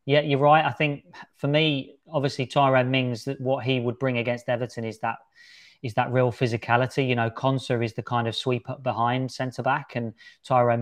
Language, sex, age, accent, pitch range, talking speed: English, male, 20-39, British, 115-130 Hz, 190 wpm